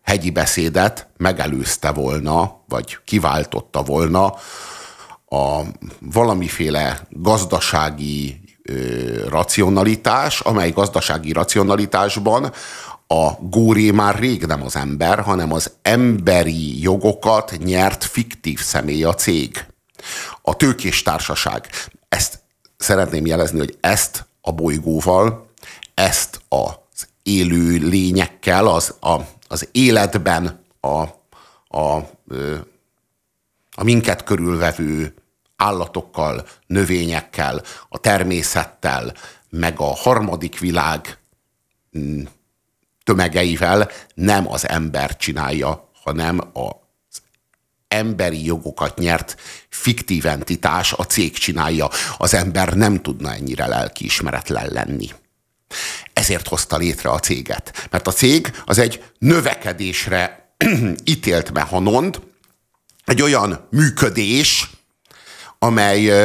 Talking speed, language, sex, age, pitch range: 90 wpm, Hungarian, male, 50-69, 80-105 Hz